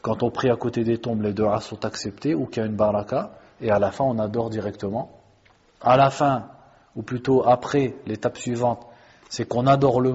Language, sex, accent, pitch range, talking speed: French, male, French, 110-130 Hz, 215 wpm